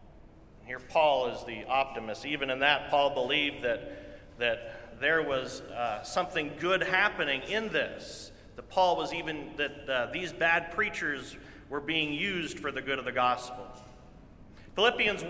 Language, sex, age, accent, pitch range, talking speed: English, male, 40-59, American, 155-225 Hz, 155 wpm